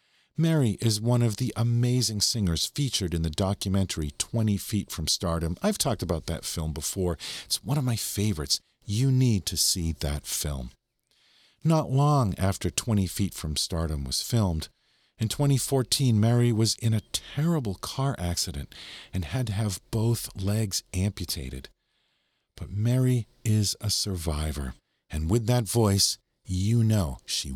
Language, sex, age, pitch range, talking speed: English, male, 50-69, 85-130 Hz, 150 wpm